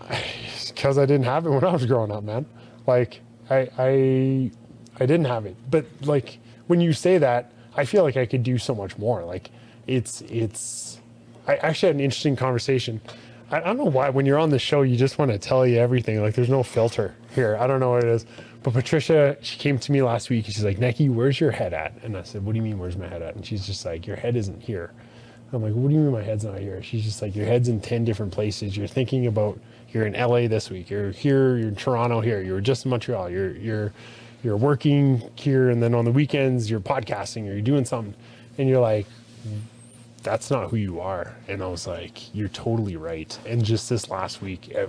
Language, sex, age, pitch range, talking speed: English, male, 20-39, 105-125 Hz, 245 wpm